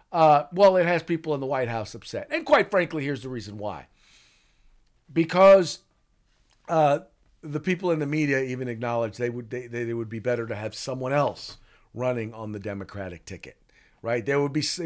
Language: English